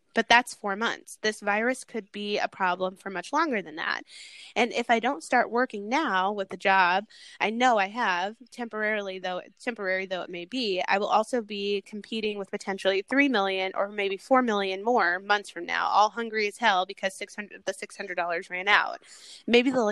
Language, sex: English, female